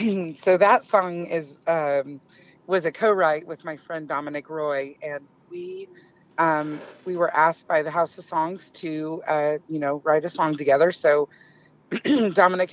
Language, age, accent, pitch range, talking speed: English, 40-59, American, 145-165 Hz, 160 wpm